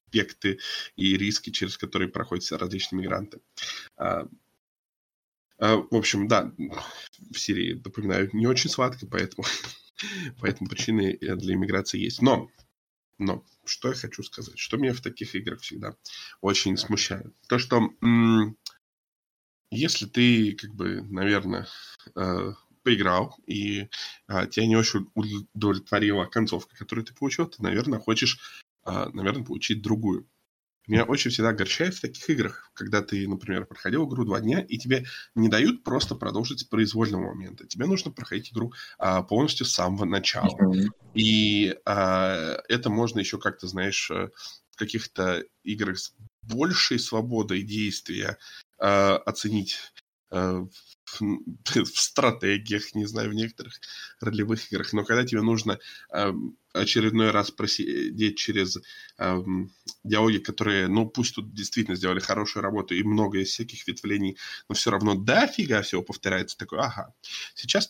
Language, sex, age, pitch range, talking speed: Russian, male, 20-39, 95-115 Hz, 135 wpm